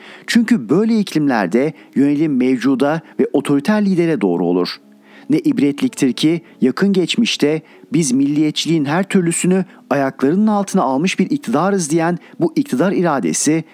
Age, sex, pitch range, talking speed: 40-59, male, 145-200 Hz, 120 wpm